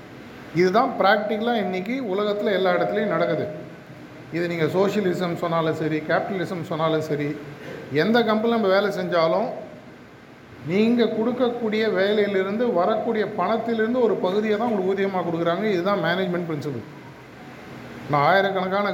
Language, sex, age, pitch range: Tamil, male, 50-69, 160-210 Hz